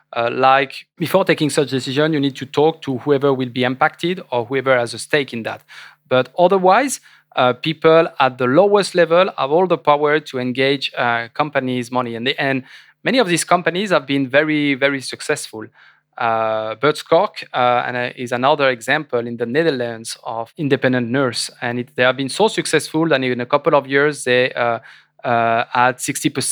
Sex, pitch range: male, 125-160 Hz